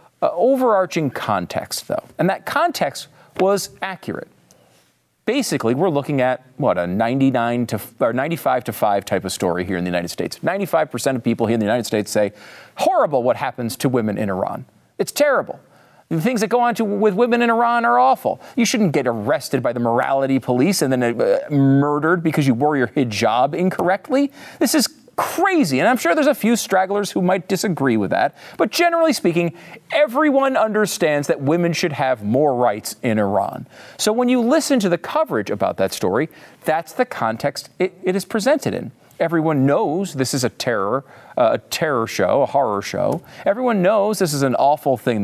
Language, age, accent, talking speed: English, 40-59, American, 190 wpm